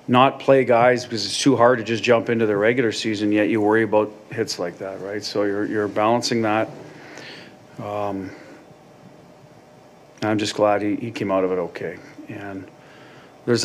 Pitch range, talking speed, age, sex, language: 105-125 Hz, 175 wpm, 40-59, male, English